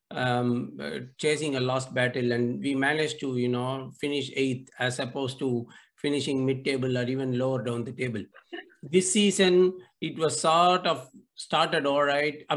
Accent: Indian